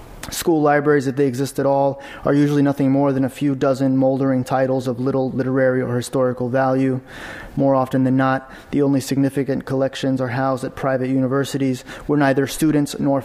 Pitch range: 130-140 Hz